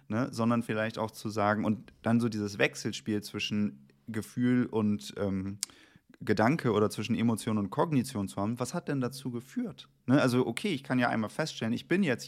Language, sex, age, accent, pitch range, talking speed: German, male, 30-49, German, 105-130 Hz, 190 wpm